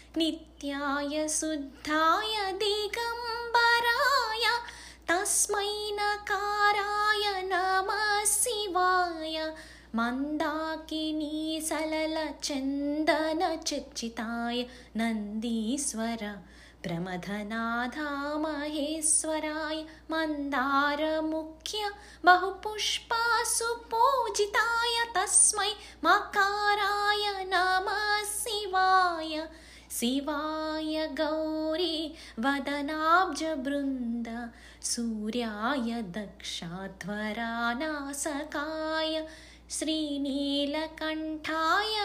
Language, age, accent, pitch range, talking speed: Telugu, 20-39, native, 280-405 Hz, 30 wpm